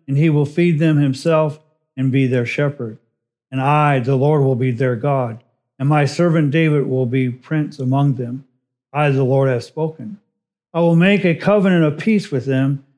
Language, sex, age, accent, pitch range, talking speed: English, male, 50-69, American, 135-165 Hz, 190 wpm